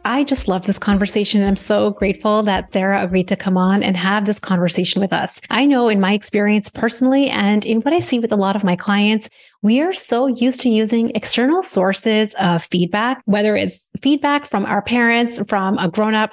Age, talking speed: 30-49, 210 wpm